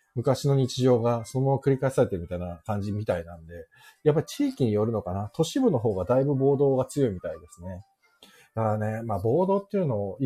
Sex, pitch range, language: male, 100-165 Hz, Japanese